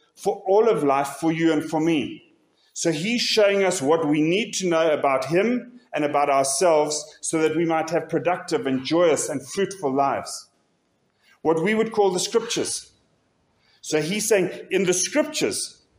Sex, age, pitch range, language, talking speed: male, 40-59, 140-190 Hz, English, 175 wpm